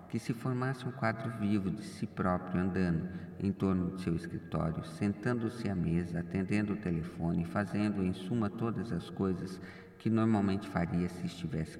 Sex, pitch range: male, 90-105 Hz